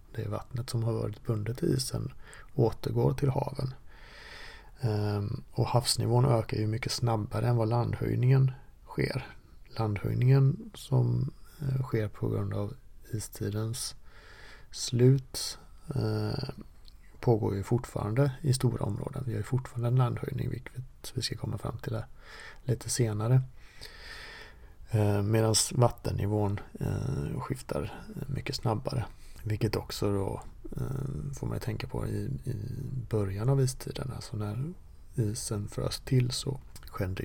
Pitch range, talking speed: 105-130 Hz, 120 wpm